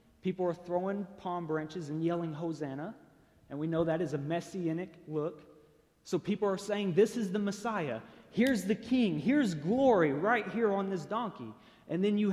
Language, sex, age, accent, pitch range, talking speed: English, male, 30-49, American, 160-220 Hz, 180 wpm